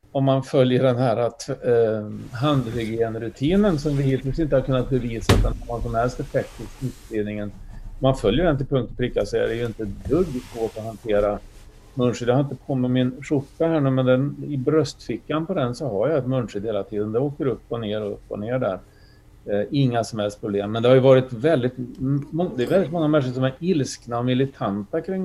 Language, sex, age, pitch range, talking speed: Swedish, male, 40-59, 110-140 Hz, 210 wpm